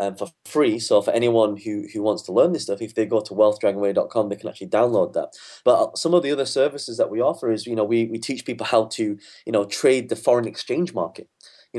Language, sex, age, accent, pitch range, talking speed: English, male, 20-39, British, 105-120 Hz, 250 wpm